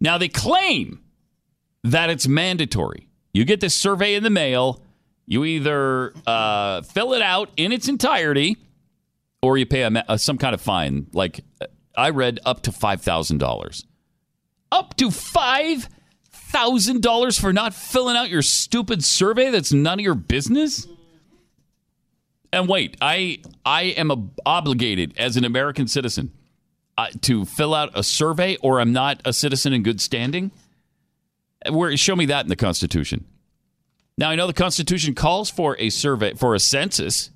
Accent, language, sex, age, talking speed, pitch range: American, English, male, 40-59, 155 wpm, 115-180 Hz